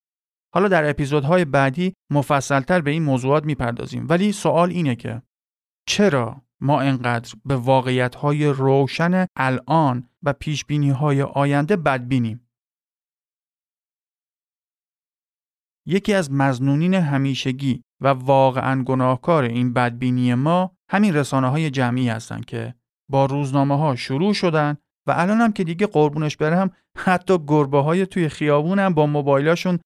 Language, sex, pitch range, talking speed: Persian, male, 130-165 Hz, 115 wpm